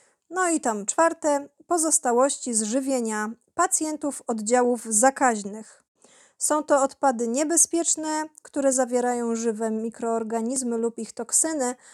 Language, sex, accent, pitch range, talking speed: Polish, female, native, 225-285 Hz, 100 wpm